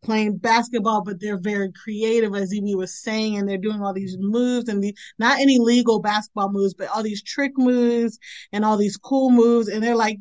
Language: English